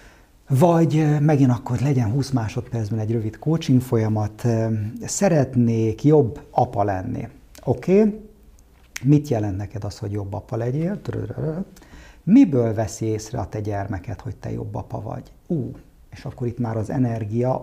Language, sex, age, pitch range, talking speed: Hungarian, male, 50-69, 110-140 Hz, 145 wpm